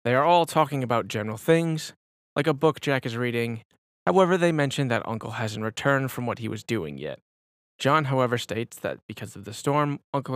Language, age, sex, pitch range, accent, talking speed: English, 20-39, male, 110-145 Hz, American, 205 wpm